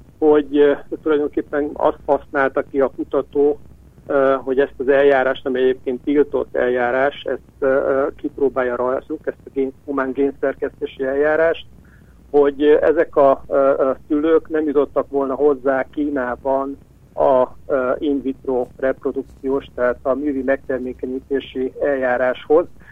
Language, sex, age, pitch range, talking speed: Hungarian, male, 50-69, 130-150 Hz, 105 wpm